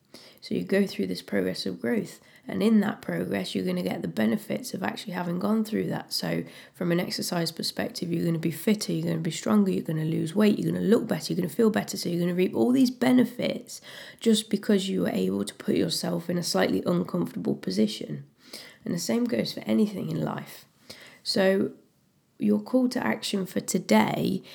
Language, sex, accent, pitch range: English, female, British, 165-215 Hz